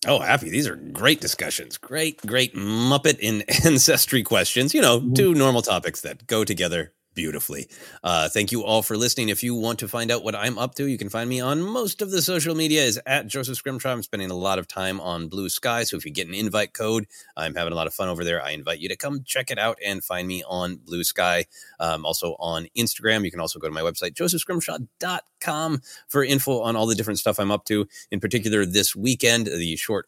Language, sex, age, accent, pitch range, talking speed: English, male, 30-49, American, 100-145 Hz, 235 wpm